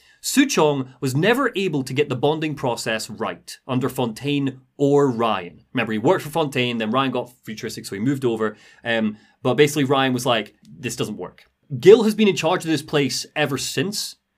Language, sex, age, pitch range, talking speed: English, male, 30-49, 125-180 Hz, 195 wpm